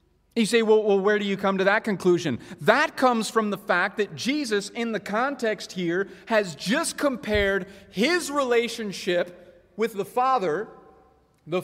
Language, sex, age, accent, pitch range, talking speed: English, male, 30-49, American, 180-235 Hz, 160 wpm